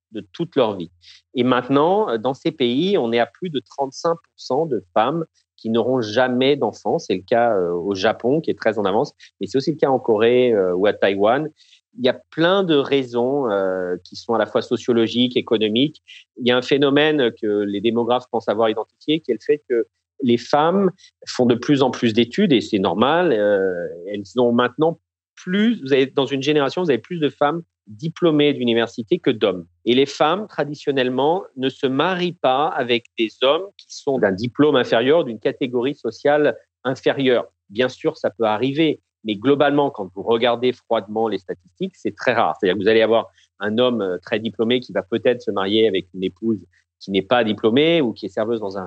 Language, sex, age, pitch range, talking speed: French, male, 40-59, 110-150 Hz, 200 wpm